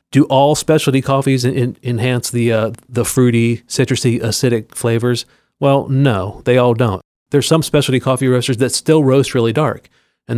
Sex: male